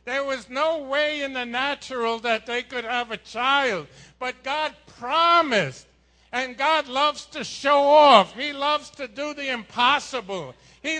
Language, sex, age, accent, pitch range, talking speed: English, male, 60-79, American, 215-265 Hz, 160 wpm